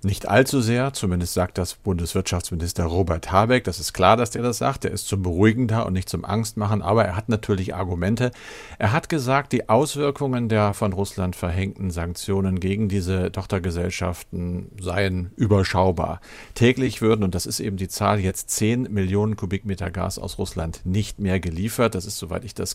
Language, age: German, 50-69